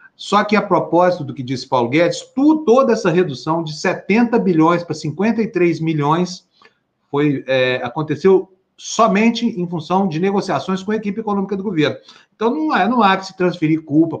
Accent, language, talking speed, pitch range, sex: Brazilian, Portuguese, 175 wpm, 135-170 Hz, male